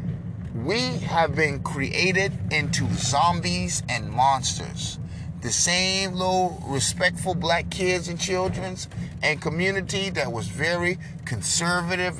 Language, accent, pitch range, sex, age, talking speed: English, American, 155-175 Hz, male, 30-49, 110 wpm